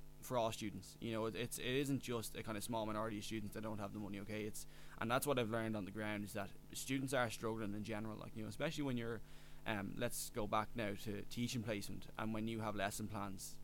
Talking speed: 260 wpm